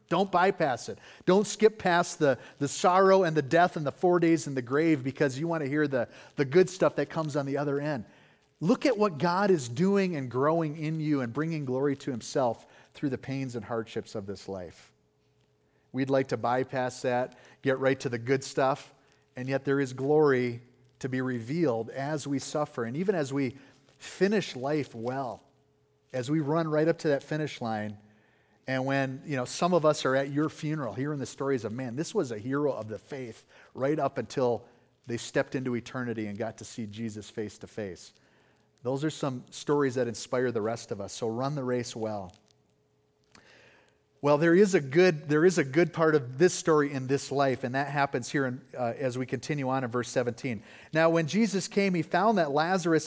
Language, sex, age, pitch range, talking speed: English, male, 40-59, 125-160 Hz, 205 wpm